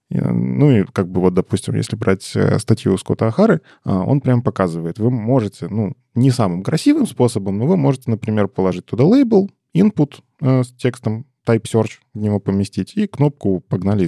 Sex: male